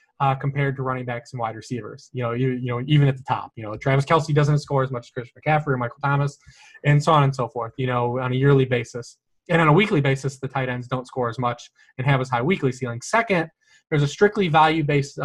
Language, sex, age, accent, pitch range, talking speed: English, male, 20-39, American, 125-150 Hz, 265 wpm